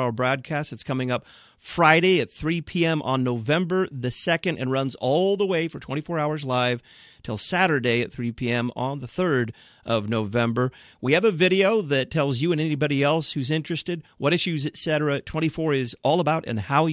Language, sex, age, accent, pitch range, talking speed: English, male, 40-59, American, 125-155 Hz, 190 wpm